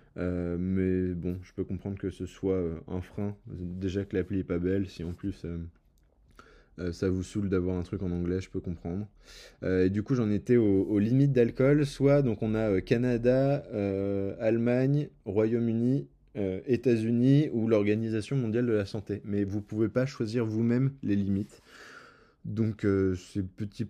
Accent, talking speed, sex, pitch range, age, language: French, 175 wpm, male, 95-115 Hz, 20-39, French